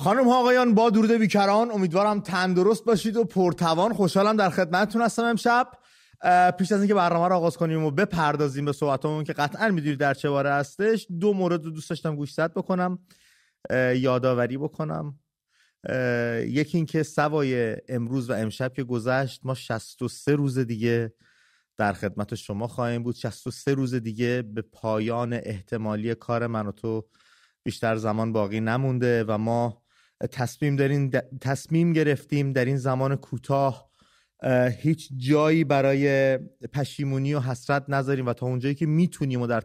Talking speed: 145 wpm